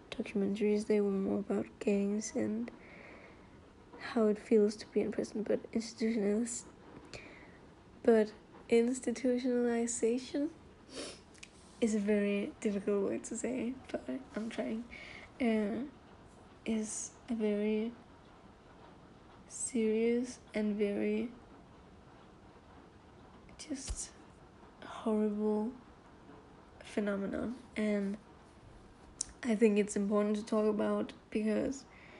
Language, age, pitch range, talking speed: English, 10-29, 210-235 Hz, 90 wpm